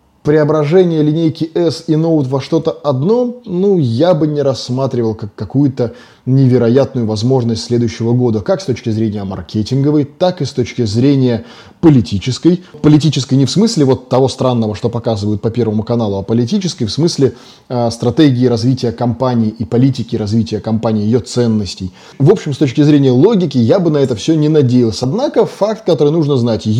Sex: male